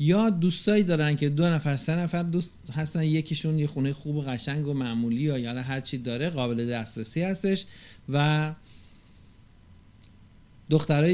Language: Persian